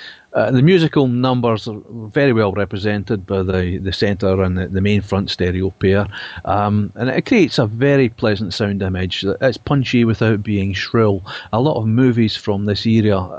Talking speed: 180 wpm